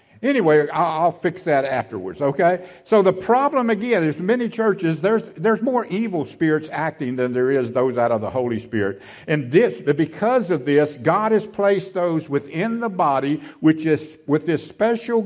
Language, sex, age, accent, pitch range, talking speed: English, male, 60-79, American, 150-205 Hz, 175 wpm